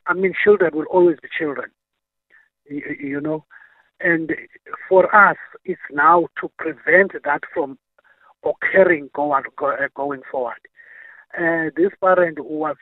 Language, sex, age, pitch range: English, male, 50-69, 150-215 Hz